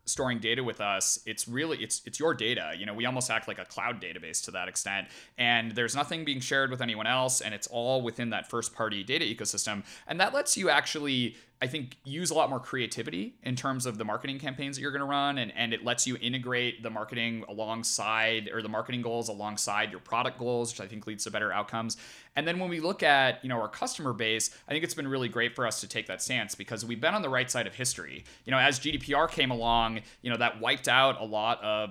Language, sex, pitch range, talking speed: English, male, 110-125 Hz, 250 wpm